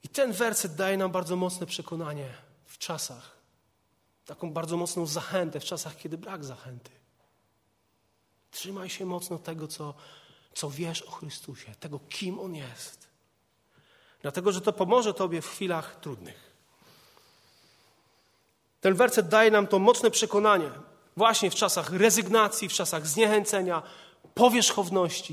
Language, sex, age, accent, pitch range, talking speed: Polish, male, 30-49, native, 160-245 Hz, 130 wpm